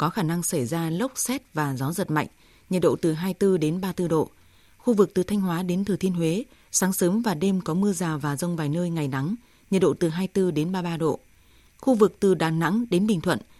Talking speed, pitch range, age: 245 wpm, 160-195 Hz, 20-39